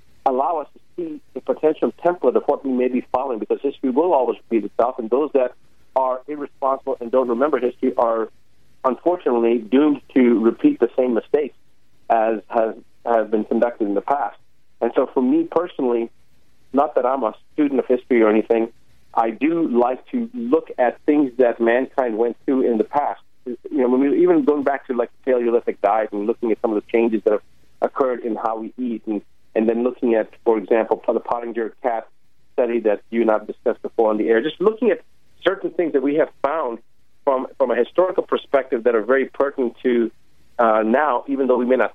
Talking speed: 205 wpm